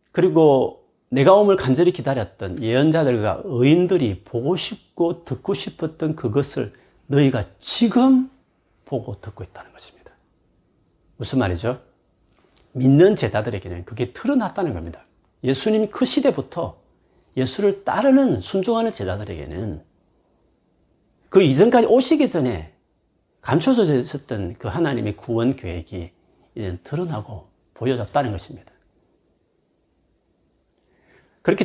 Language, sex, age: Korean, male, 40-59